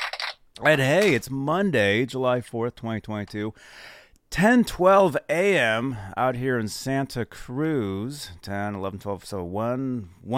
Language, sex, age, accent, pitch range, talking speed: English, male, 30-49, American, 105-155 Hz, 125 wpm